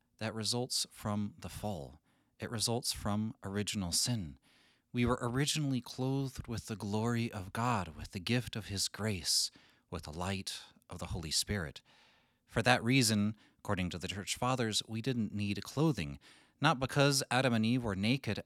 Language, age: English, 30-49